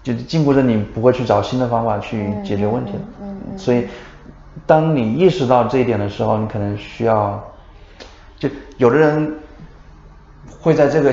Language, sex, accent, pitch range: Chinese, male, native, 105-140 Hz